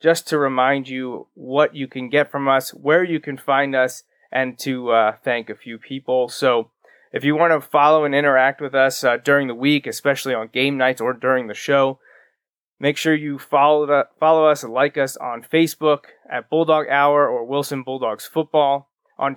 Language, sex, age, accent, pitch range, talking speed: English, male, 20-39, American, 130-150 Hz, 195 wpm